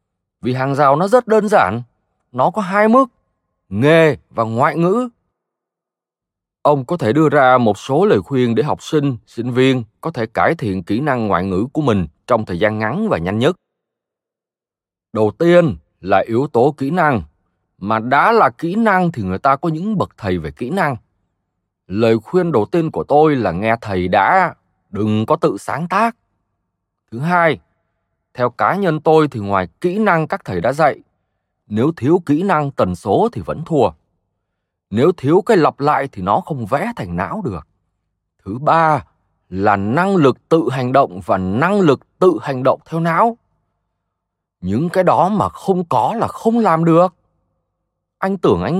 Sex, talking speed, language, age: male, 180 wpm, Vietnamese, 20-39